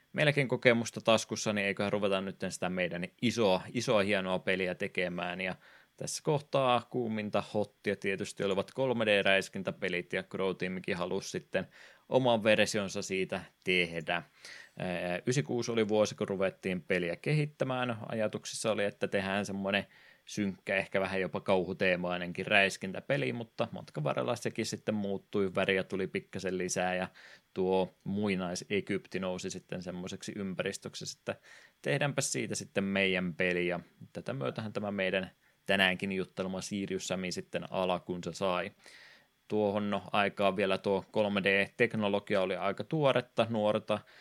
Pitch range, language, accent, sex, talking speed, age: 95-105 Hz, Finnish, native, male, 130 wpm, 20-39